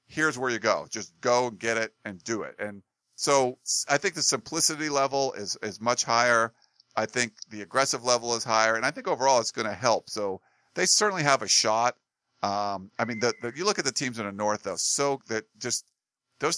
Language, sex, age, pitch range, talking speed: English, male, 50-69, 105-130 Hz, 225 wpm